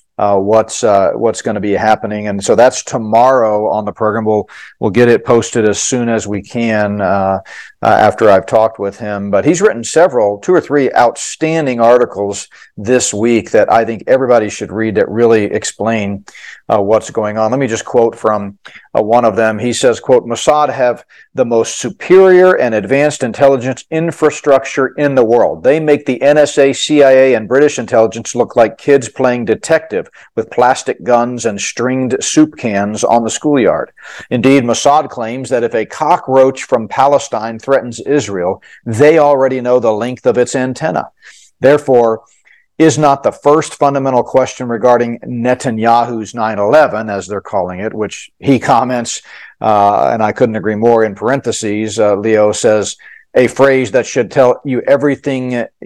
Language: English